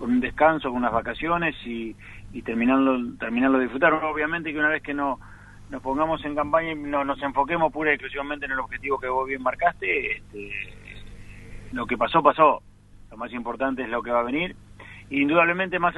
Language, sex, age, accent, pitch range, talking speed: Spanish, male, 40-59, Argentinian, 115-155 Hz, 195 wpm